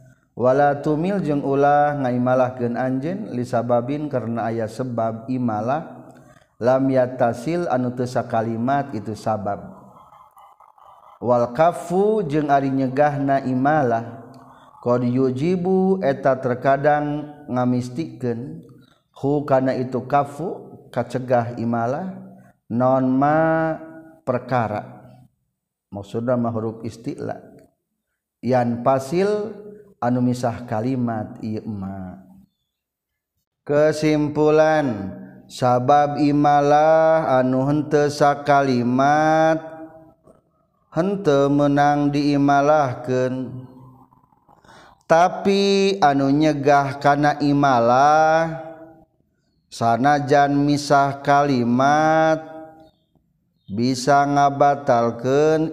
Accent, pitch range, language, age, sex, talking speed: native, 125-150 Hz, Indonesian, 40-59, male, 70 wpm